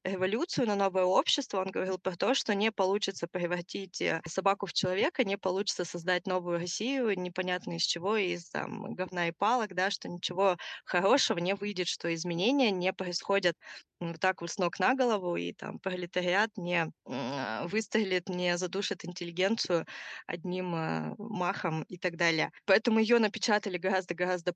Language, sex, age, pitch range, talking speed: Russian, female, 20-39, 170-200 Hz, 150 wpm